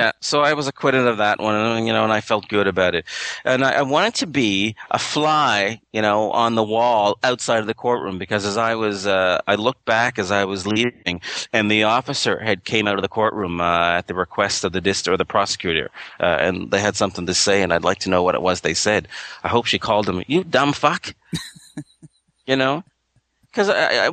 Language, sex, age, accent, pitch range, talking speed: English, male, 30-49, American, 100-130 Hz, 230 wpm